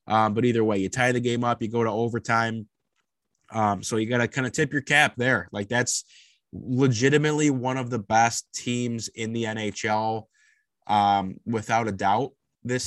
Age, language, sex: 20-39, English, male